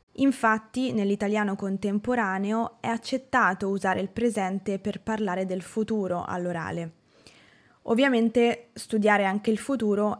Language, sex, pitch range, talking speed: Italian, female, 190-230 Hz, 105 wpm